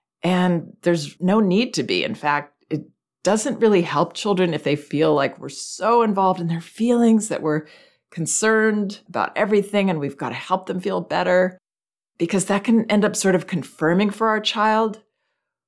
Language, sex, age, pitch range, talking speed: English, female, 40-59, 150-205 Hz, 180 wpm